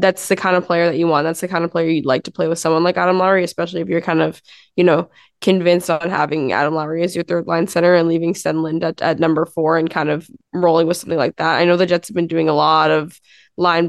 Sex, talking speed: female, 275 wpm